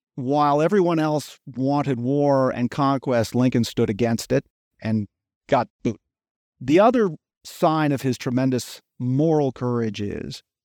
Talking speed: 130 wpm